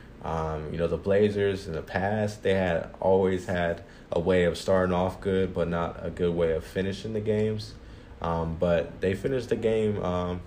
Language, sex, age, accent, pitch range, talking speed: English, male, 20-39, American, 85-100 Hz, 195 wpm